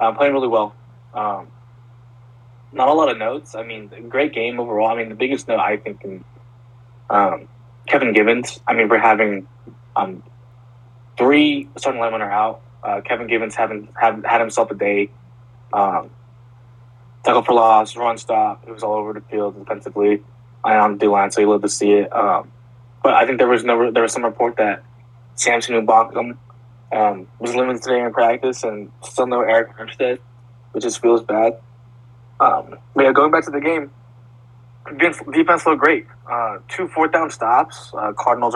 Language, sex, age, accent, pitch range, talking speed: English, male, 20-39, American, 115-120 Hz, 180 wpm